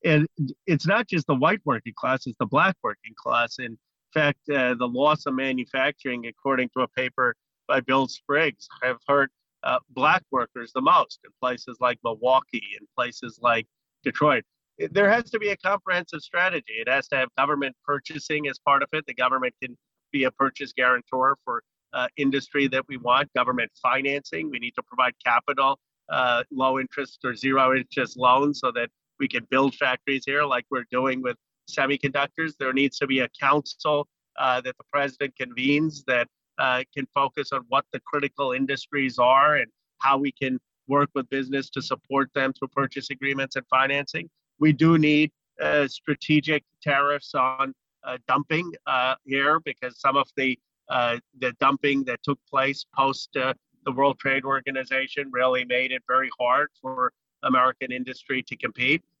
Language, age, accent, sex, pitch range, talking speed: English, 40-59, American, male, 130-145 Hz, 170 wpm